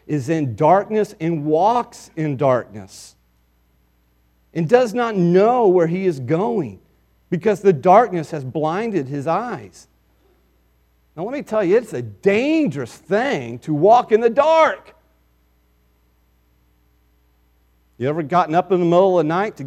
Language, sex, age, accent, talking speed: English, male, 40-59, American, 145 wpm